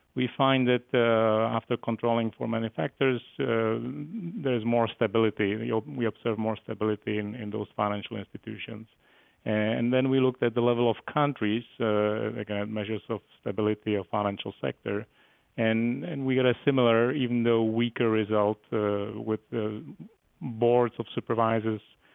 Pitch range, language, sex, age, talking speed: 105-120 Hz, English, male, 40-59, 150 wpm